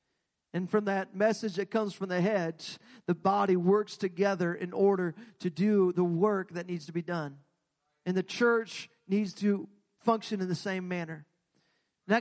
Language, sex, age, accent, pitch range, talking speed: English, male, 40-59, American, 160-195 Hz, 170 wpm